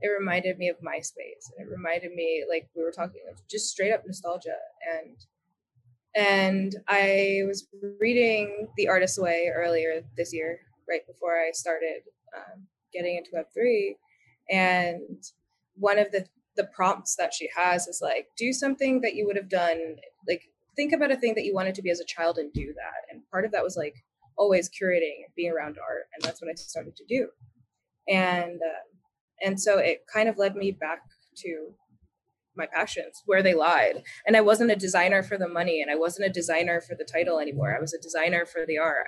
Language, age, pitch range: English, 20-39, 165-200 Hz